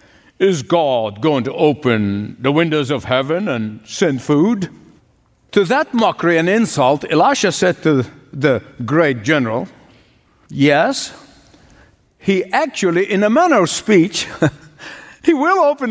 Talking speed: 130 wpm